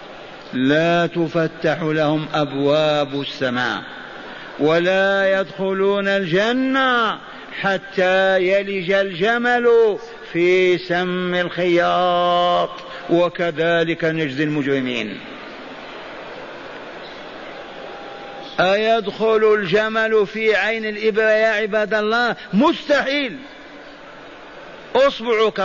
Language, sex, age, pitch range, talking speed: Arabic, male, 50-69, 175-220 Hz, 65 wpm